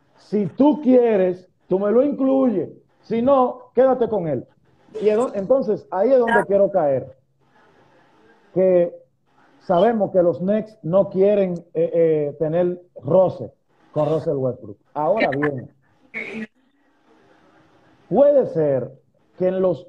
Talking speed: 120 wpm